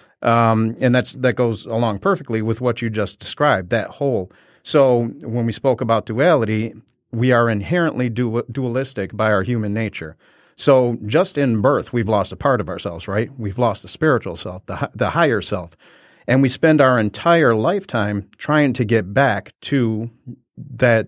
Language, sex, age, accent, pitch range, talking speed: English, male, 40-59, American, 110-130 Hz, 175 wpm